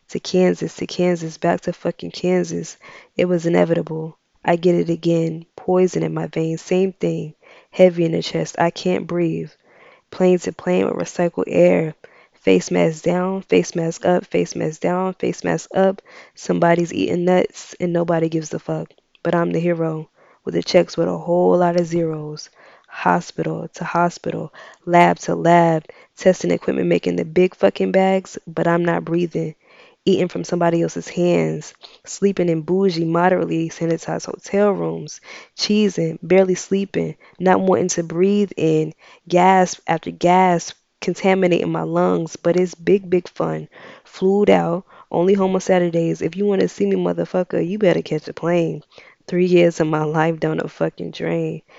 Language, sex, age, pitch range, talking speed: English, female, 20-39, 160-180 Hz, 165 wpm